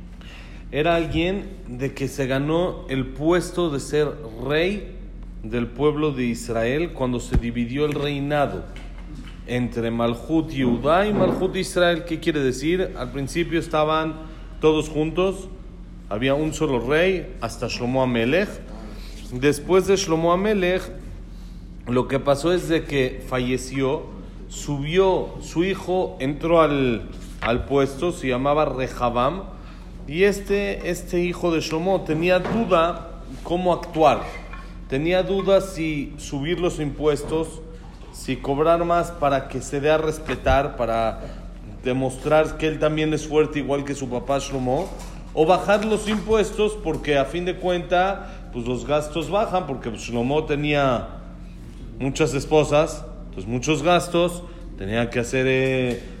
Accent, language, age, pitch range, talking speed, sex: Mexican, Spanish, 40-59, 130-170 Hz, 135 wpm, male